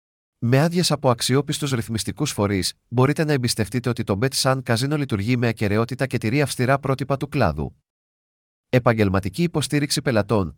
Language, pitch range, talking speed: Greek, 110-145 Hz, 140 wpm